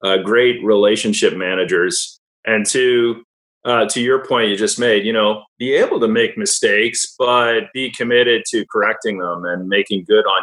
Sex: male